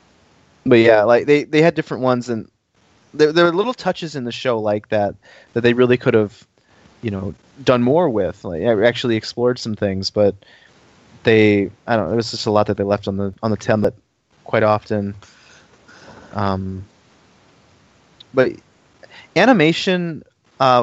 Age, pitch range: 20-39, 100-125 Hz